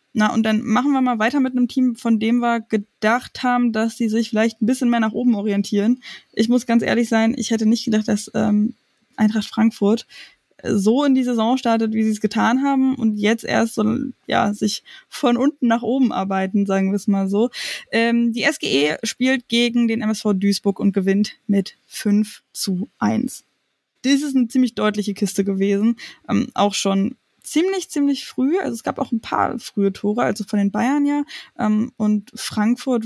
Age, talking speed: 20-39, 190 wpm